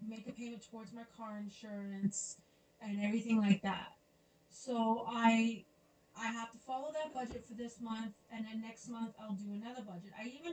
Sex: female